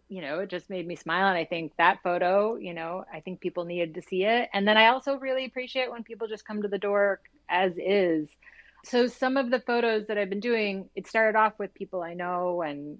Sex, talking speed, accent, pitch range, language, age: female, 245 wpm, American, 155-200 Hz, English, 30-49